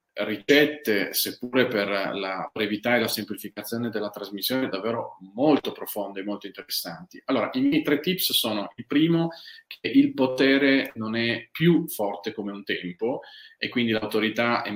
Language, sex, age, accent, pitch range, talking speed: Italian, male, 30-49, native, 105-125 Hz, 155 wpm